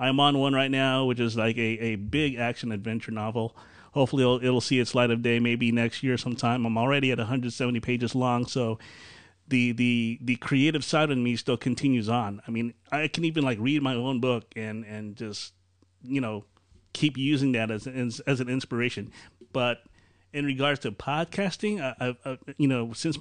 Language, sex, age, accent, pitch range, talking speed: English, male, 30-49, American, 115-145 Hz, 205 wpm